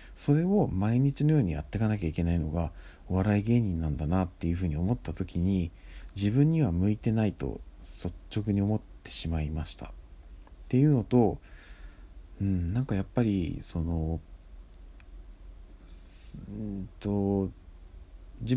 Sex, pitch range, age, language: male, 80-110 Hz, 40-59, Japanese